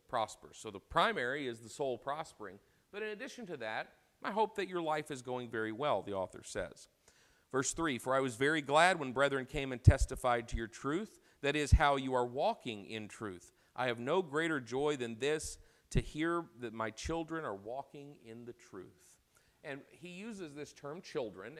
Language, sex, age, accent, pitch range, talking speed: English, male, 40-59, American, 115-150 Hz, 195 wpm